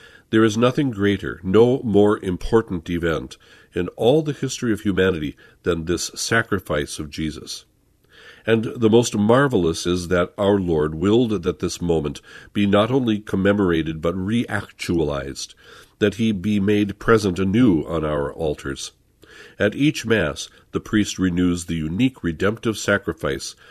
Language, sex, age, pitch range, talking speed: English, male, 50-69, 85-110 Hz, 140 wpm